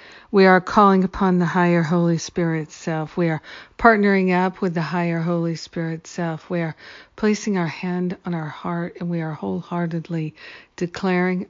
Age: 50-69